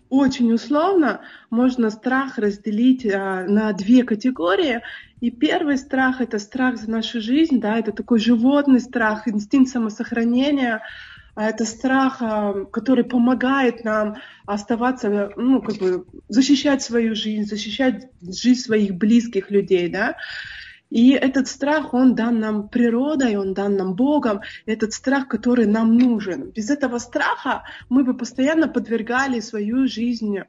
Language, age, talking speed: Russian, 20-39, 135 wpm